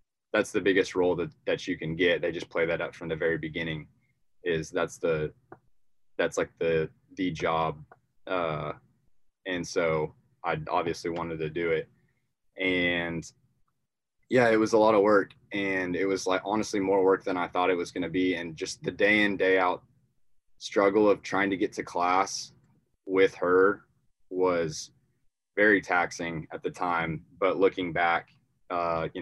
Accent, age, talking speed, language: American, 20-39, 175 wpm, English